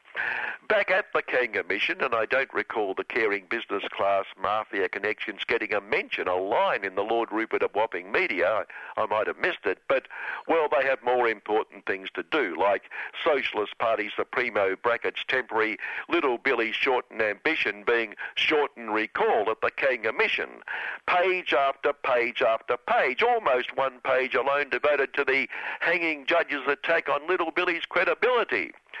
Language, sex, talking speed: English, male, 160 wpm